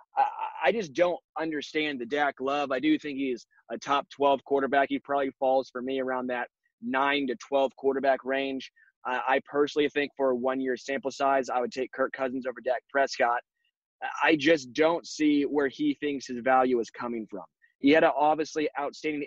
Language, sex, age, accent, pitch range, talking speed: English, male, 20-39, American, 130-155 Hz, 190 wpm